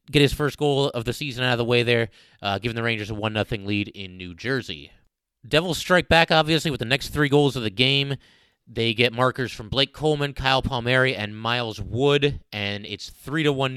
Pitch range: 115-145 Hz